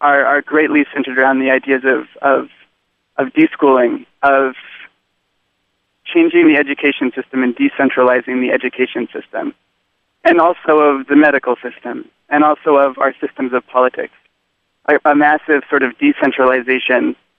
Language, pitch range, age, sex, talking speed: English, 130-150 Hz, 20-39, male, 130 wpm